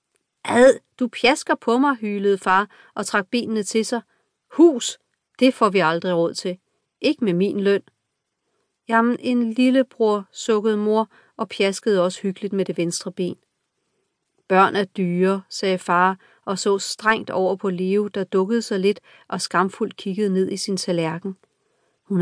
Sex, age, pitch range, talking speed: female, 40-59, 185-230 Hz, 155 wpm